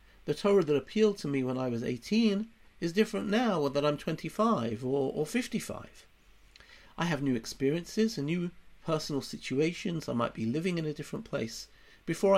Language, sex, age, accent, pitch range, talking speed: English, male, 50-69, British, 135-200 Hz, 175 wpm